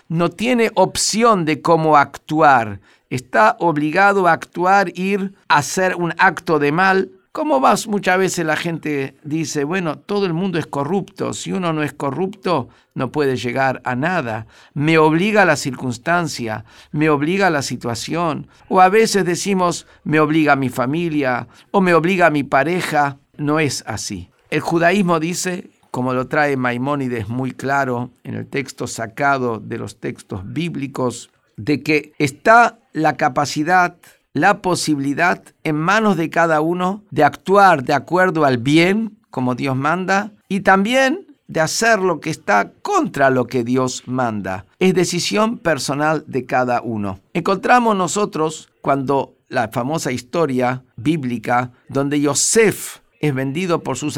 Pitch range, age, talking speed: 130-185 Hz, 50-69, 150 wpm